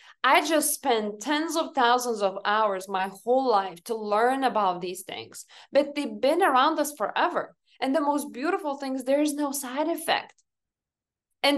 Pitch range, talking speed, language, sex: 230-315 Hz, 170 wpm, English, female